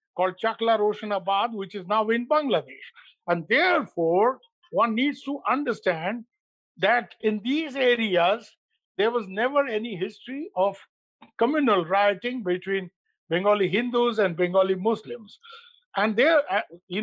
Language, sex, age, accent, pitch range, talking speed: English, male, 50-69, Indian, 200-260 Hz, 125 wpm